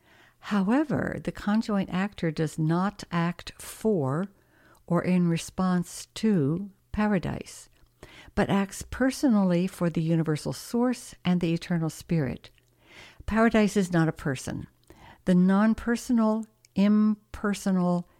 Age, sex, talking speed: 60-79, female, 105 wpm